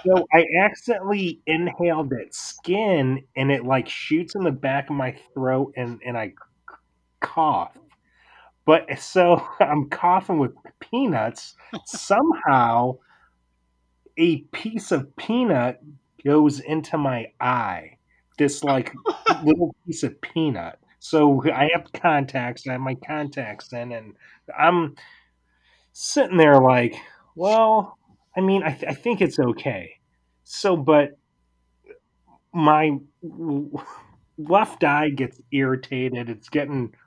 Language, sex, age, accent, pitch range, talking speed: English, male, 30-49, American, 125-165 Hz, 120 wpm